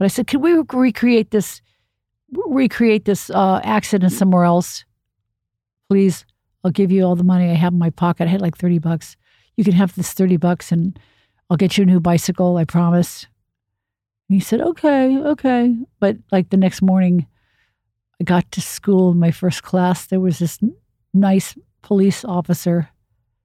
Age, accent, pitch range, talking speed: 50-69, American, 160-200 Hz, 185 wpm